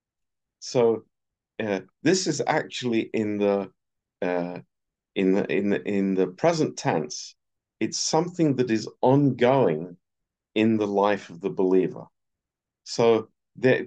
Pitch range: 95-115 Hz